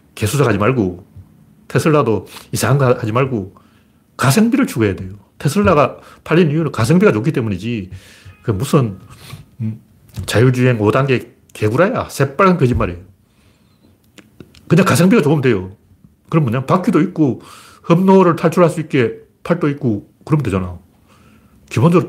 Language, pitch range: Korean, 105-160 Hz